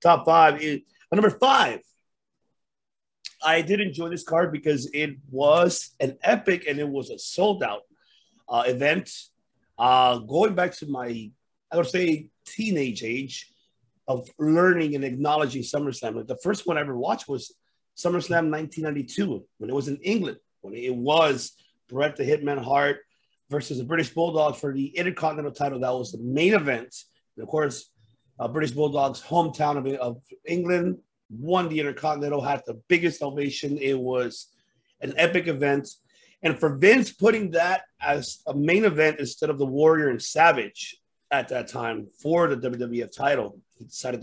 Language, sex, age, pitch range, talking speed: English, male, 30-49, 130-165 Hz, 160 wpm